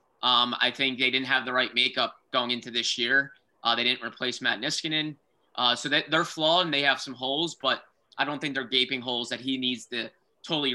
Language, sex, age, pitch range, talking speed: English, male, 20-39, 125-145 Hz, 230 wpm